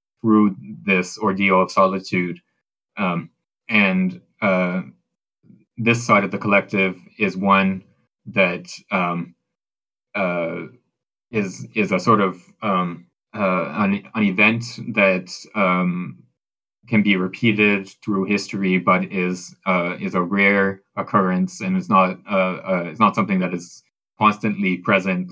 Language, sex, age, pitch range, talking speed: English, male, 20-39, 90-105 Hz, 130 wpm